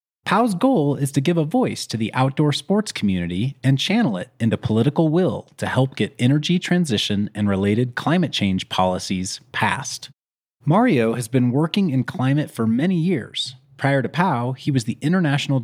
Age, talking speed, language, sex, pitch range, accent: 30-49, 175 wpm, English, male, 115-165 Hz, American